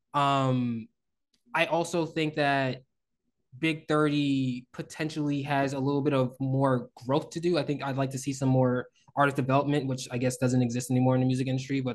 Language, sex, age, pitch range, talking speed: English, male, 20-39, 130-150 Hz, 190 wpm